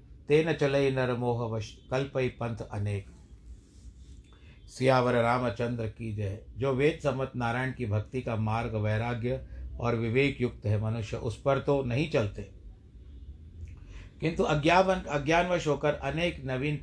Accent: native